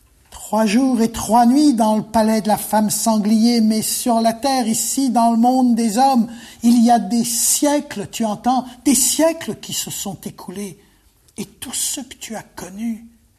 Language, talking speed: French, 190 wpm